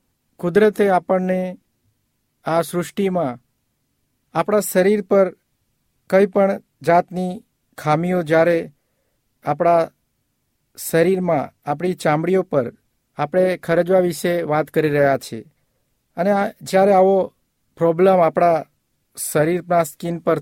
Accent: native